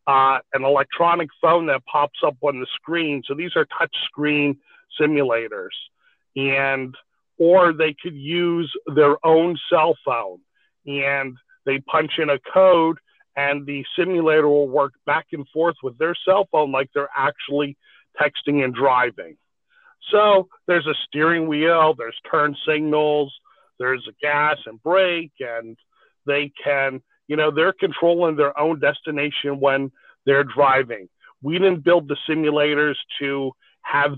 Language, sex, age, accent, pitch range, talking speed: English, male, 50-69, American, 140-170 Hz, 140 wpm